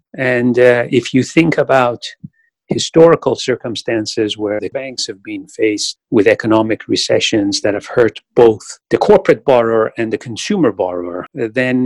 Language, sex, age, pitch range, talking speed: English, male, 40-59, 105-130 Hz, 145 wpm